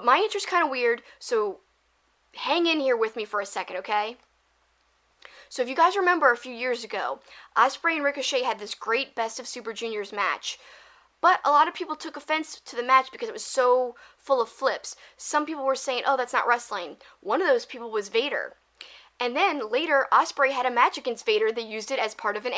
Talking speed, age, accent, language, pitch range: 220 wpm, 10-29, American, English, 235-315 Hz